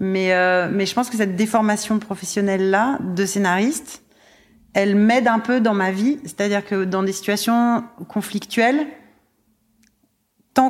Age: 30-49